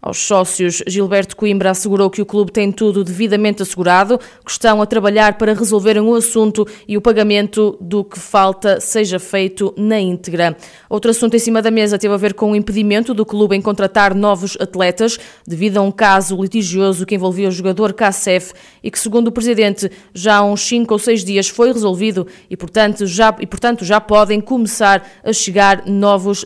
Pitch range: 195-225 Hz